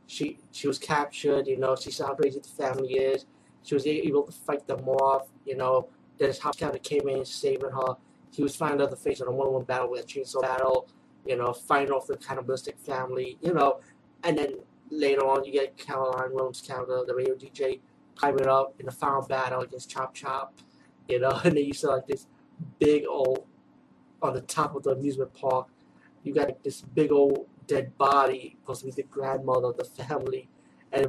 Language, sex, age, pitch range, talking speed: English, male, 30-49, 130-165 Hz, 210 wpm